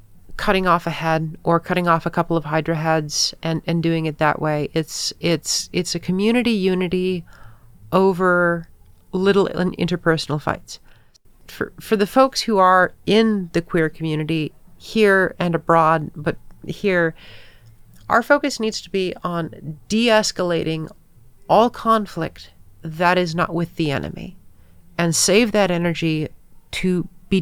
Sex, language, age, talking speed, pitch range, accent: female, English, 40-59, 140 wpm, 160-190 Hz, American